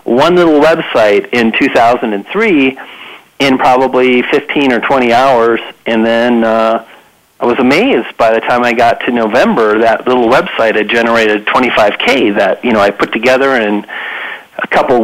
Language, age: English, 40-59